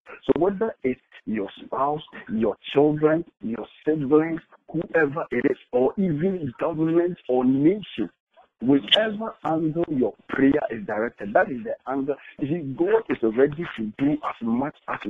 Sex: male